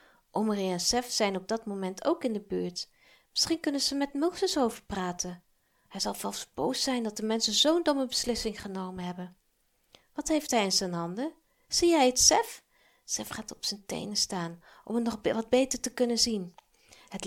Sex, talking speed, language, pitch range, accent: female, 195 wpm, Dutch, 195-280 Hz, Dutch